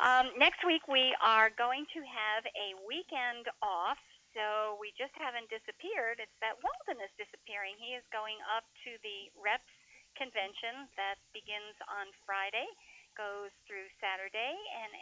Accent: American